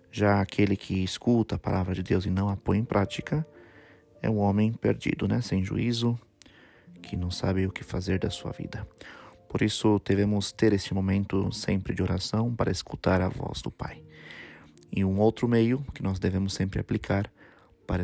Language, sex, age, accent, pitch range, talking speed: Portuguese, male, 30-49, Brazilian, 90-105 Hz, 185 wpm